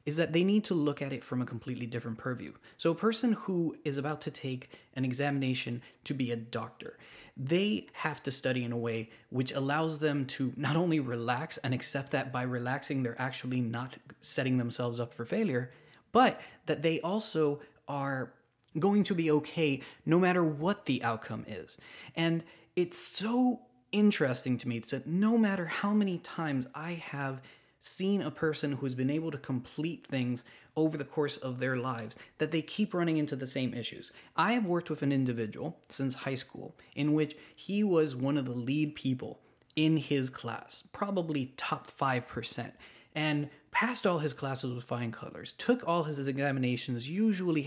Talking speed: 180 wpm